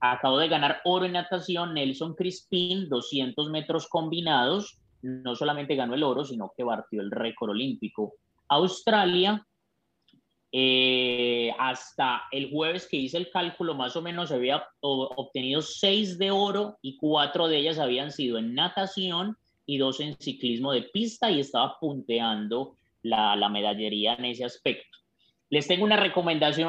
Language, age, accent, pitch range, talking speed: Spanish, 20-39, Colombian, 130-175 Hz, 150 wpm